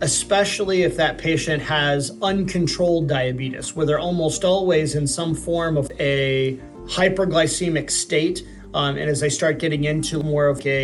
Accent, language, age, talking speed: American, English, 30-49, 155 wpm